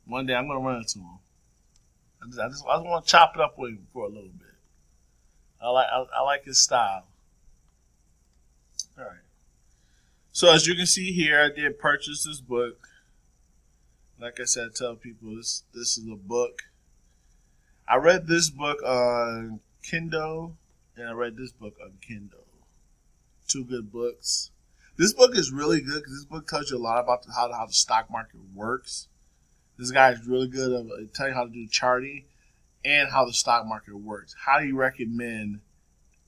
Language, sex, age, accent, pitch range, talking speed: English, male, 20-39, American, 100-135 Hz, 185 wpm